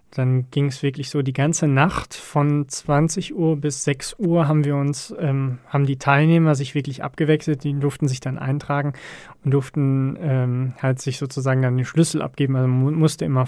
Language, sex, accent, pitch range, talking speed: German, male, German, 135-160 Hz, 190 wpm